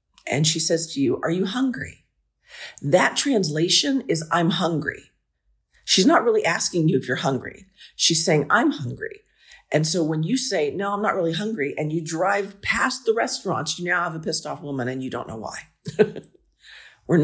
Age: 50-69